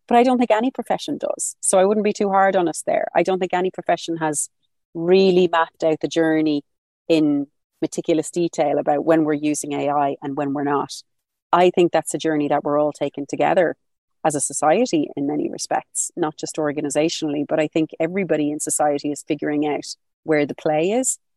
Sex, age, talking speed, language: female, 30-49, 200 wpm, English